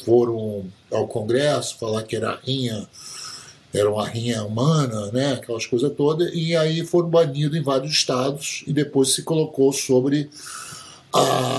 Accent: Brazilian